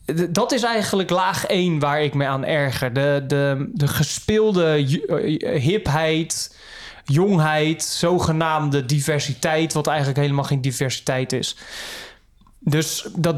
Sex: male